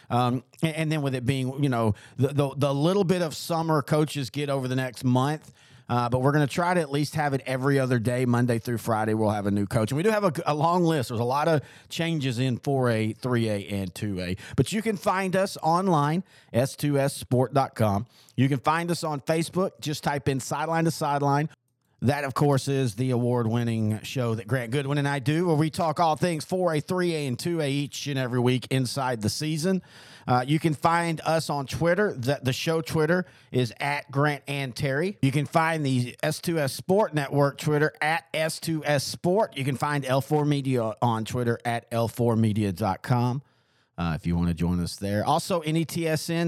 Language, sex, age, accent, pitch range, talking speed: English, male, 40-59, American, 125-160 Hz, 200 wpm